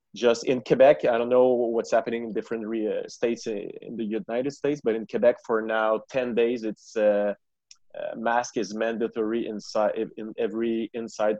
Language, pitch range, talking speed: English, 110-125 Hz, 170 wpm